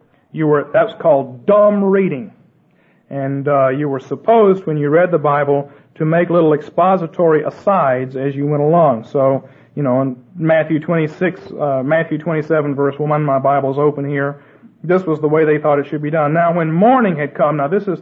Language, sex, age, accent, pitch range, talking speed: English, male, 40-59, American, 145-185 Hz, 200 wpm